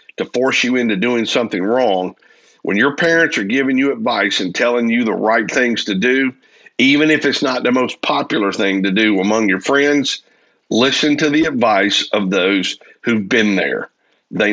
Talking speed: 185 wpm